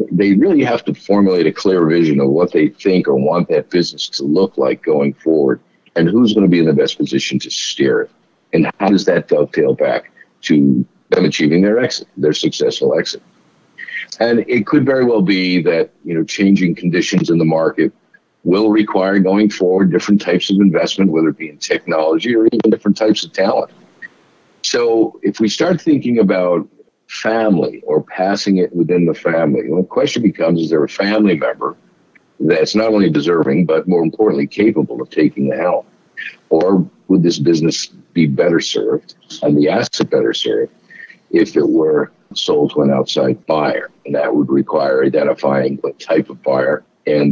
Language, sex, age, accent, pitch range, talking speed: English, male, 50-69, American, 80-115 Hz, 185 wpm